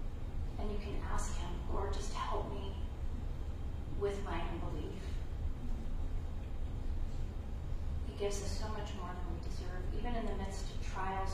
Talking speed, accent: 145 wpm, American